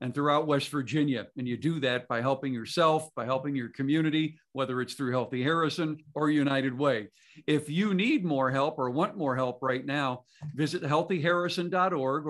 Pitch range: 130-175 Hz